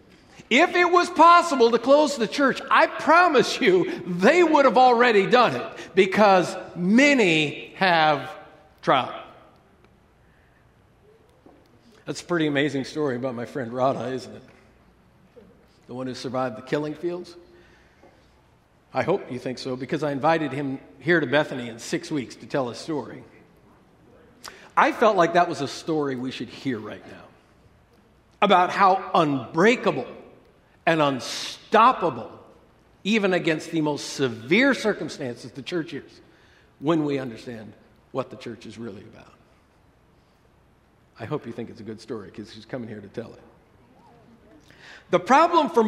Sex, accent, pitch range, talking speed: male, American, 135-205 Hz, 145 wpm